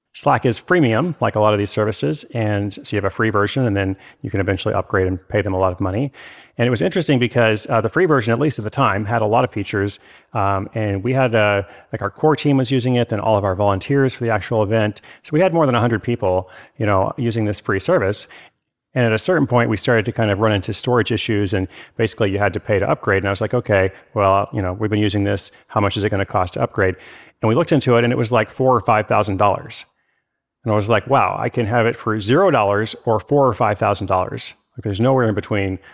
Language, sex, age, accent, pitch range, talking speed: English, male, 30-49, American, 100-125 Hz, 270 wpm